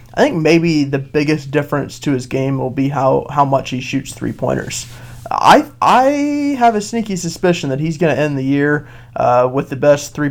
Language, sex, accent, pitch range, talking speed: English, male, American, 130-155 Hz, 210 wpm